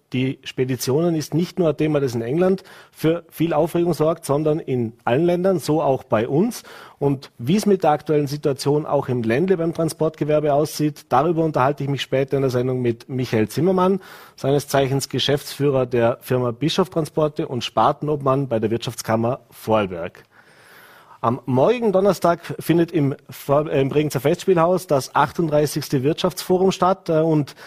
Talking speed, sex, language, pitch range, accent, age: 155 wpm, male, German, 135-165 Hz, German, 40-59